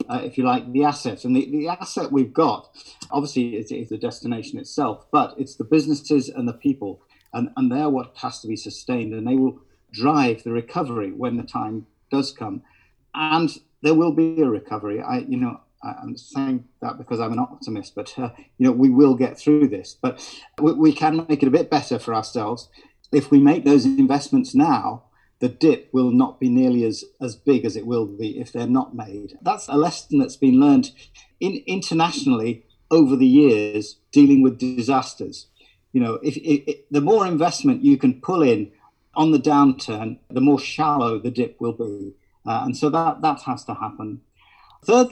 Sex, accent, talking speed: male, British, 195 wpm